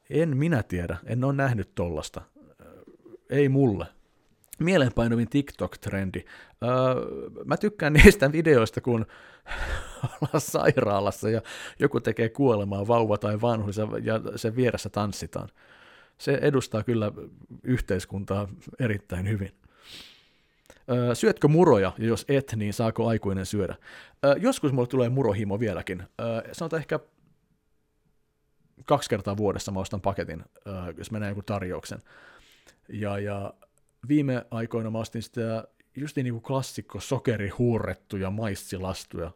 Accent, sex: native, male